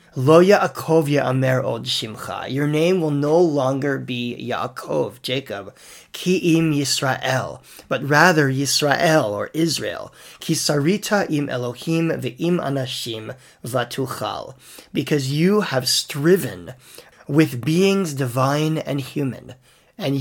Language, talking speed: English, 105 wpm